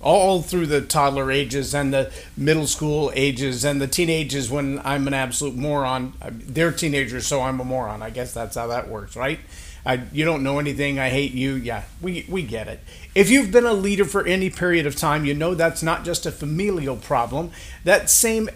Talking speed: 205 wpm